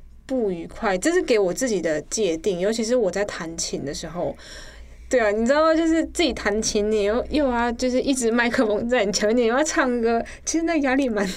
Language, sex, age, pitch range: Chinese, female, 20-39, 205-270 Hz